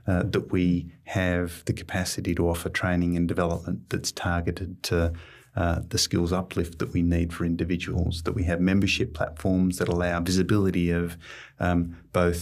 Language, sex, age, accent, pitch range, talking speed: English, male, 30-49, Australian, 85-95 Hz, 165 wpm